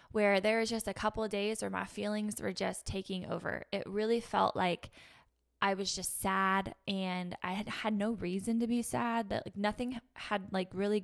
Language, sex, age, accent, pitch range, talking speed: English, female, 10-29, American, 190-225 Hz, 205 wpm